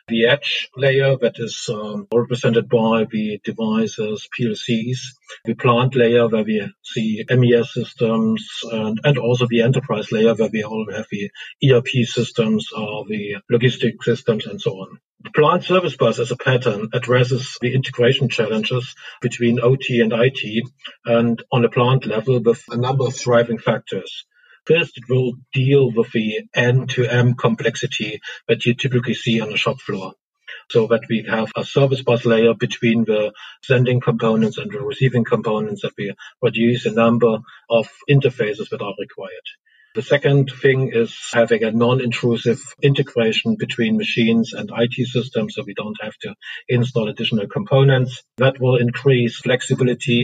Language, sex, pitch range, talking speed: English, male, 115-130 Hz, 160 wpm